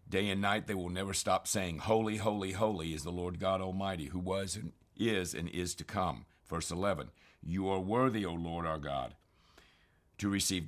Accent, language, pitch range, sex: American, English, 85-100 Hz, male